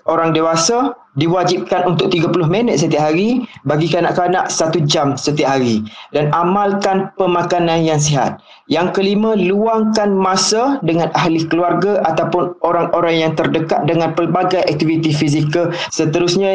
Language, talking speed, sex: Malay, 125 wpm, male